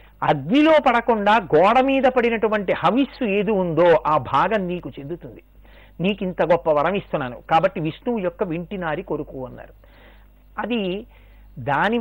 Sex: male